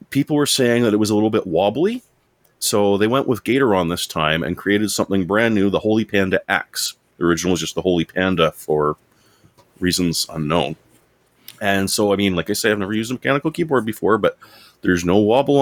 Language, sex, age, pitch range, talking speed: English, male, 30-49, 90-120 Hz, 205 wpm